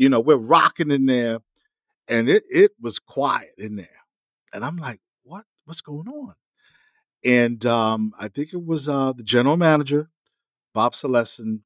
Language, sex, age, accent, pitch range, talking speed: English, male, 50-69, American, 110-155 Hz, 165 wpm